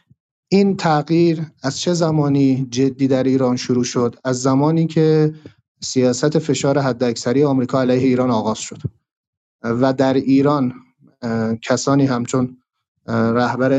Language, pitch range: Persian, 120-145 Hz